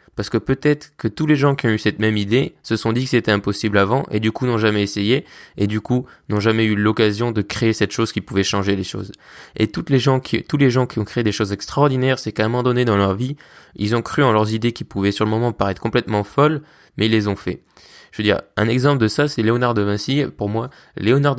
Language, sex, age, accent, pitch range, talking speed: French, male, 20-39, French, 105-130 Hz, 270 wpm